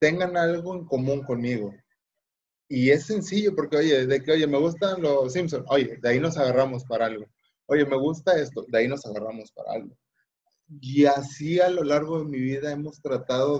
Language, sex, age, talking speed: Spanish, male, 30-49, 195 wpm